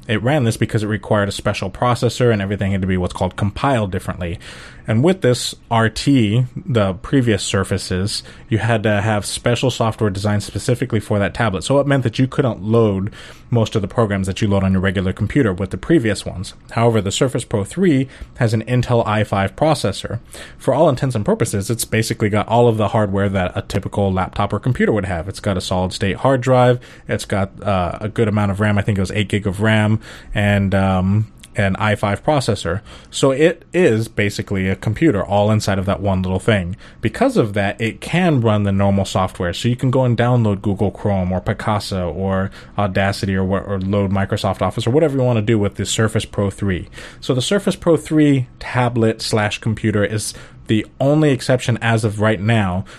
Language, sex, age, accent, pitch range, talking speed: English, male, 20-39, American, 100-115 Hz, 205 wpm